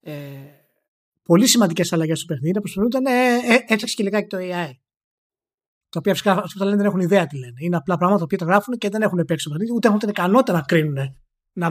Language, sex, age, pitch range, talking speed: Greek, male, 20-39, 160-215 Hz, 225 wpm